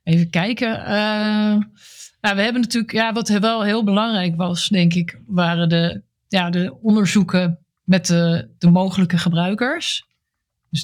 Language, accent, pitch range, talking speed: Dutch, Dutch, 170-195 Hz, 145 wpm